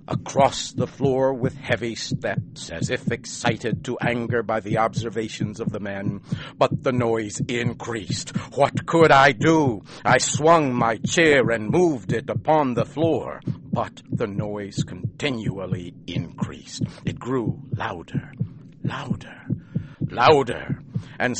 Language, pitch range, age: English, 120-160 Hz, 60-79